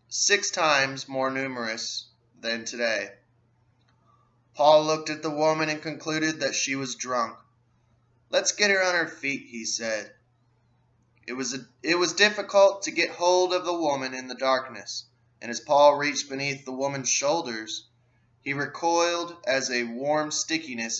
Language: English